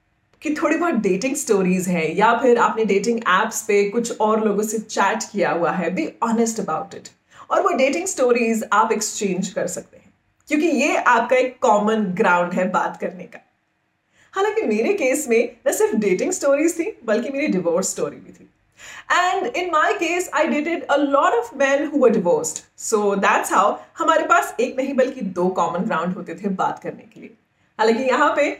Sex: female